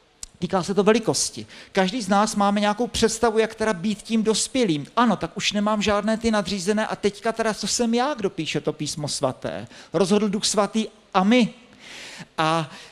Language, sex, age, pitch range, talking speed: Czech, male, 50-69, 150-200 Hz, 180 wpm